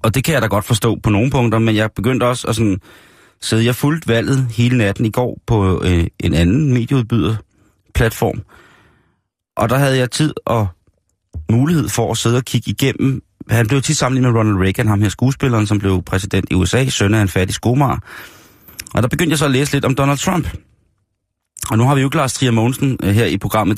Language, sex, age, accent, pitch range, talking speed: Danish, male, 30-49, native, 100-125 Hz, 215 wpm